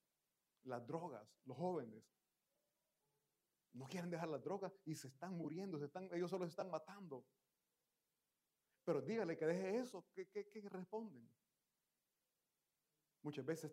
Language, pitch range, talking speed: Italian, 135-175 Hz, 135 wpm